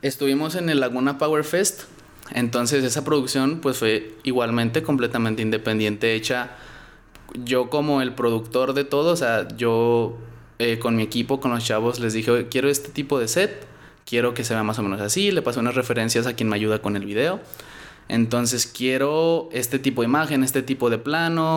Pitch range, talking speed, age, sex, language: 120-145 Hz, 185 wpm, 20-39, male, Spanish